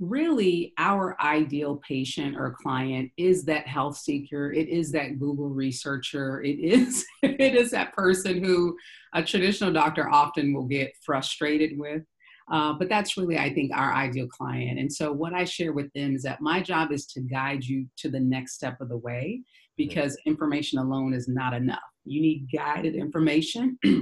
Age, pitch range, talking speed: 40-59, 140-180 Hz, 175 wpm